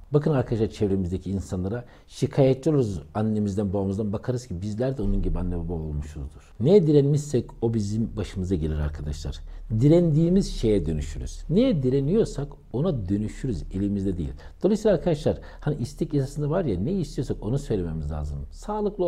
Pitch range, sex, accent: 80-135 Hz, male, native